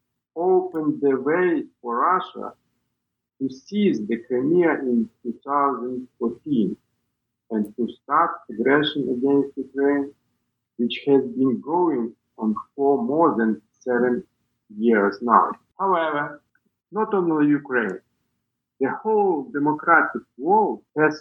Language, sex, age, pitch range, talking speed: English, male, 50-69, 120-160 Hz, 105 wpm